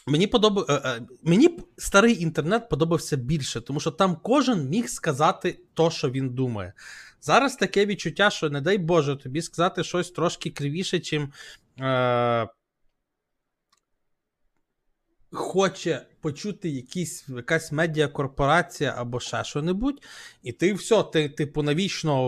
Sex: male